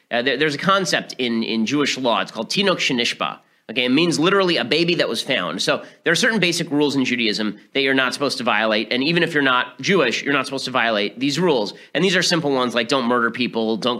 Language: English